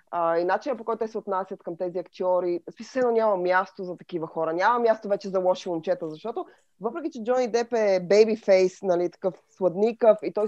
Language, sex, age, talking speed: Bulgarian, female, 20-39, 200 wpm